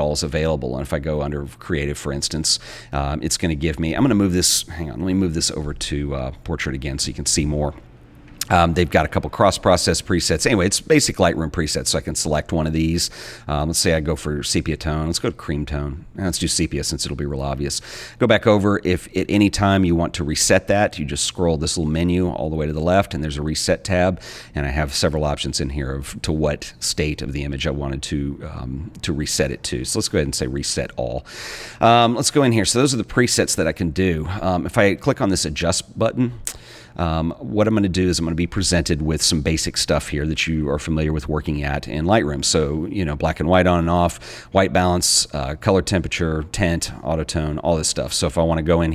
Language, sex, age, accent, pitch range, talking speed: English, male, 40-59, American, 75-90 Hz, 255 wpm